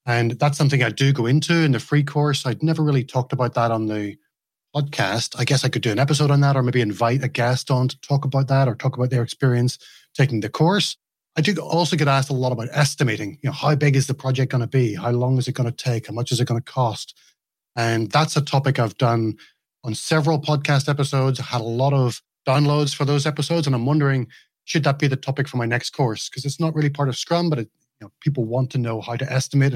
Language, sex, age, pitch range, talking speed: English, male, 30-49, 120-150 Hz, 260 wpm